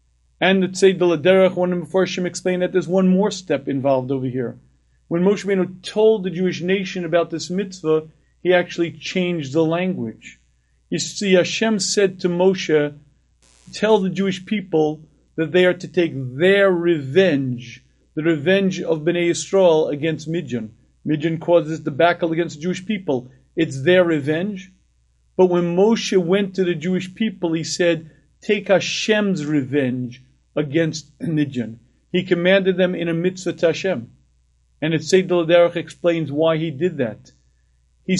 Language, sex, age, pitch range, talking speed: English, male, 40-59, 150-185 Hz, 150 wpm